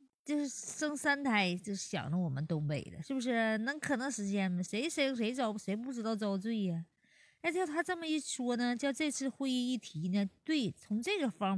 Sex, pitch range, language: female, 185-275 Hz, Chinese